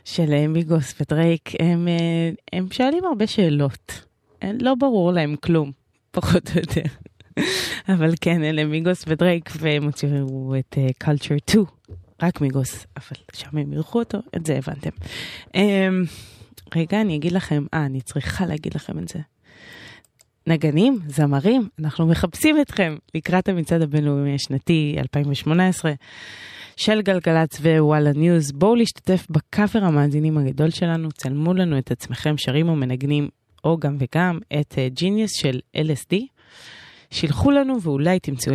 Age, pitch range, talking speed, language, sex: 20-39, 140-180 Hz, 135 wpm, Hebrew, female